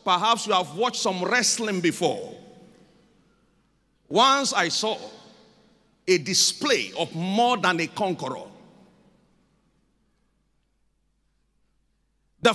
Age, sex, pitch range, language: 50-69, male, 190-230 Hz, Japanese